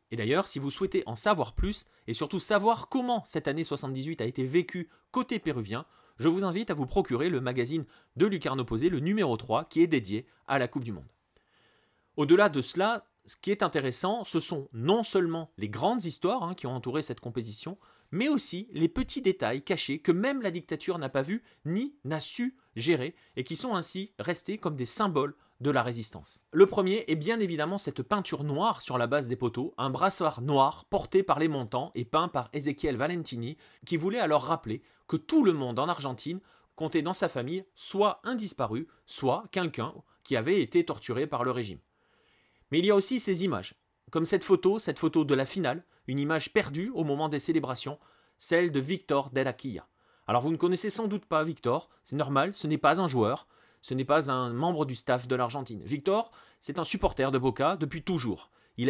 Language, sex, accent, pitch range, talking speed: French, male, French, 130-185 Hz, 205 wpm